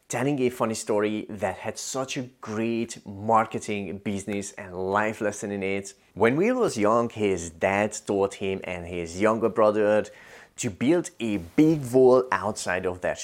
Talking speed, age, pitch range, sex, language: 165 wpm, 30-49, 95-115 Hz, male, English